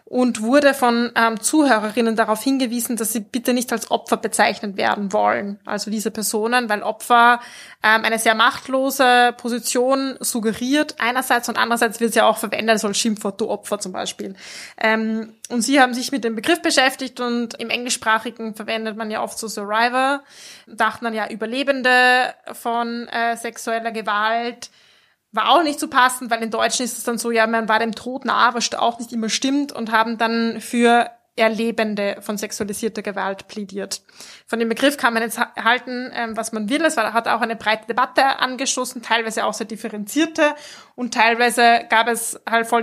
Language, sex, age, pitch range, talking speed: German, female, 20-39, 220-245 Hz, 180 wpm